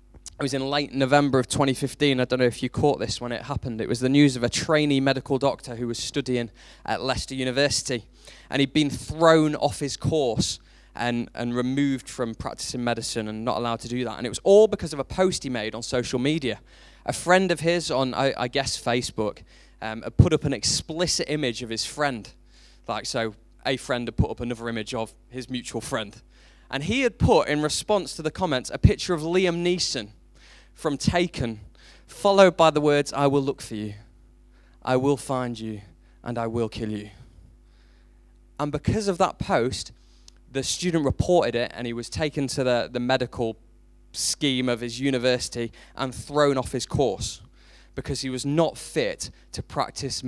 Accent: British